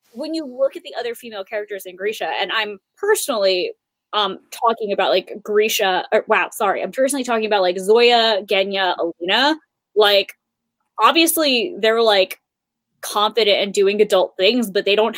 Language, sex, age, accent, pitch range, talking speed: English, female, 20-39, American, 195-245 Hz, 160 wpm